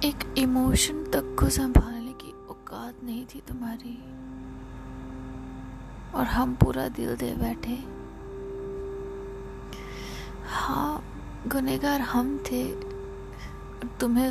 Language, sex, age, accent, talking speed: Hindi, female, 20-39, native, 90 wpm